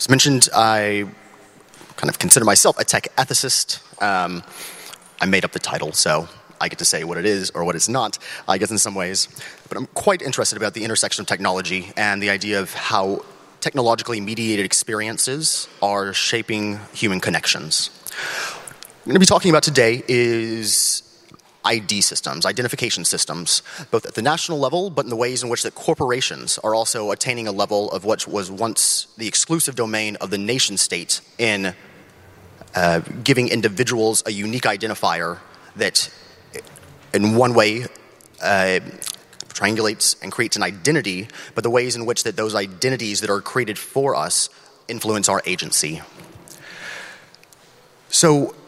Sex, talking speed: male, 160 wpm